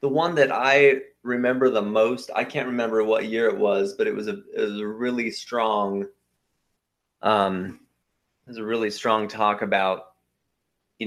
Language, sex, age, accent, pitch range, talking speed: English, male, 30-49, American, 100-125 Hz, 155 wpm